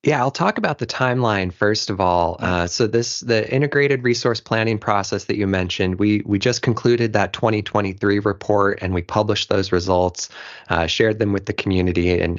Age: 20-39